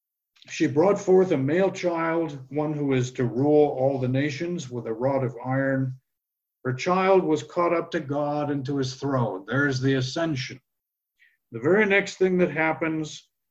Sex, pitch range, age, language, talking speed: male, 125-160 Hz, 60-79, English, 175 wpm